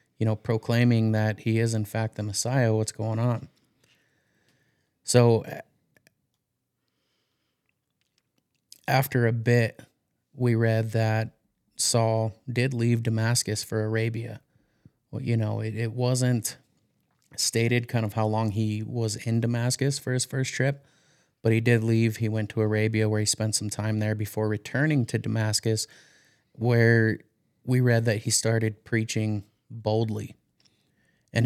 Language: English